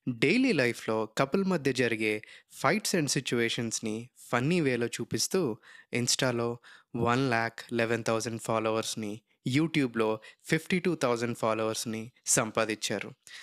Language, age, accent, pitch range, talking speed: Telugu, 20-39, native, 115-150 Hz, 105 wpm